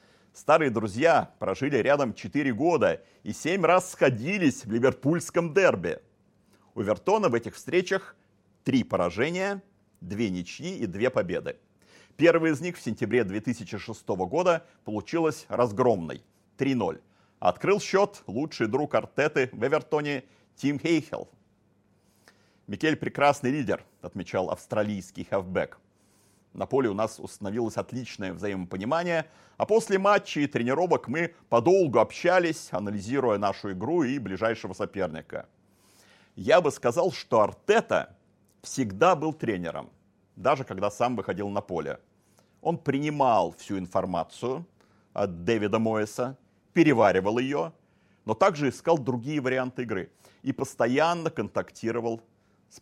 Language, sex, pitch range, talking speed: Russian, male, 100-160 Hz, 120 wpm